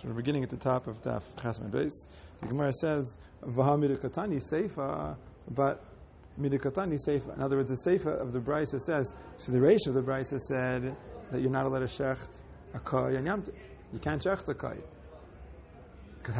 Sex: male